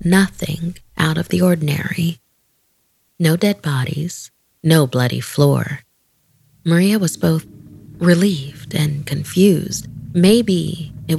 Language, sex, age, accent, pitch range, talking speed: English, female, 30-49, American, 140-170 Hz, 100 wpm